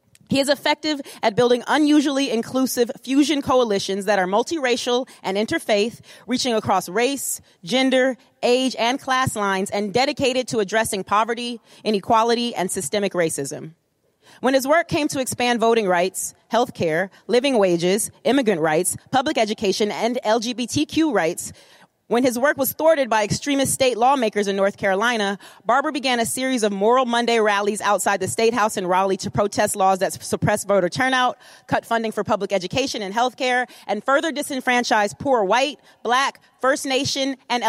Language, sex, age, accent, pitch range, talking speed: English, female, 30-49, American, 205-260 Hz, 160 wpm